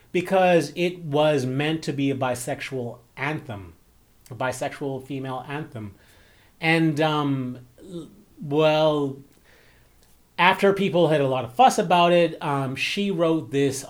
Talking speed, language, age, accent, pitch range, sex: 125 wpm, English, 30-49, American, 125-170 Hz, male